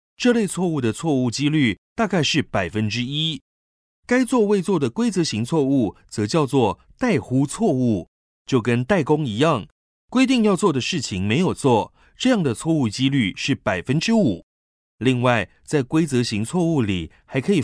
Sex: male